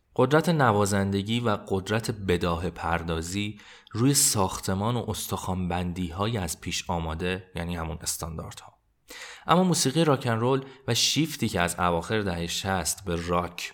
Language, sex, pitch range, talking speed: Persian, male, 85-110 Hz, 135 wpm